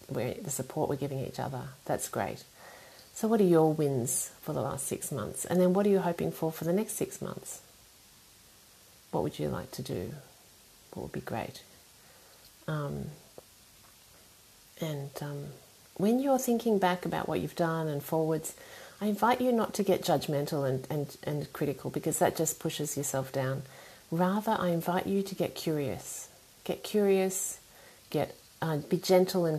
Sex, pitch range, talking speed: female, 140-185 Hz, 170 wpm